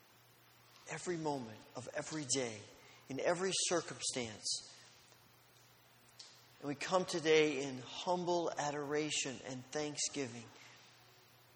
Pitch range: 130-165 Hz